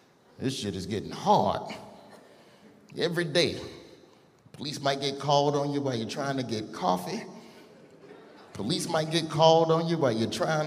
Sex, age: male, 30-49